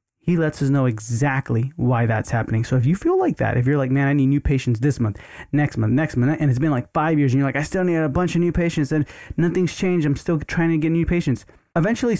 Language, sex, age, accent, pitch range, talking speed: English, male, 20-39, American, 115-150 Hz, 275 wpm